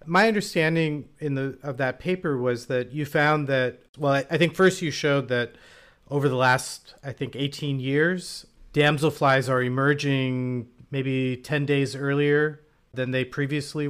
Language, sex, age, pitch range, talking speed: English, male, 40-59, 125-150 Hz, 160 wpm